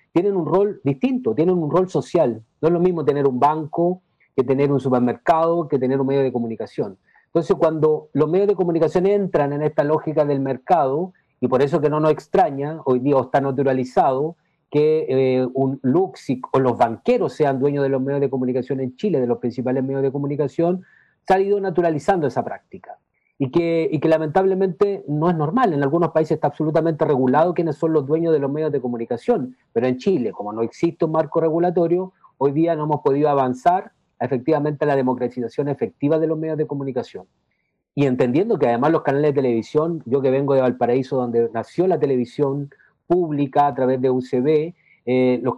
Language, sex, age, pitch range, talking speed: Spanish, male, 40-59, 135-165 Hz, 195 wpm